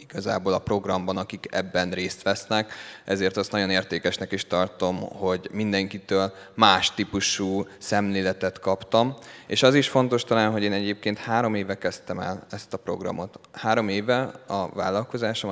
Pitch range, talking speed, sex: 95-105 Hz, 145 wpm, male